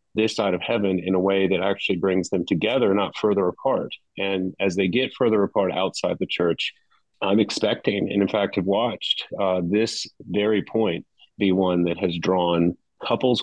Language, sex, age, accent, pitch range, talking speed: English, male, 30-49, American, 90-105 Hz, 185 wpm